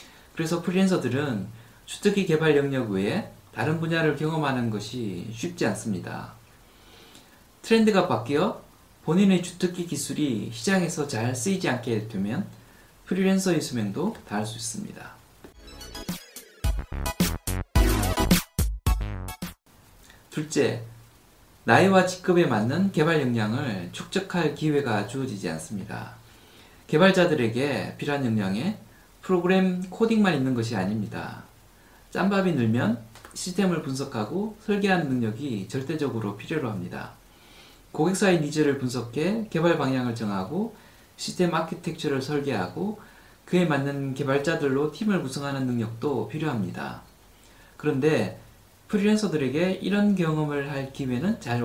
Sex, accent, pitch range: male, native, 110-175 Hz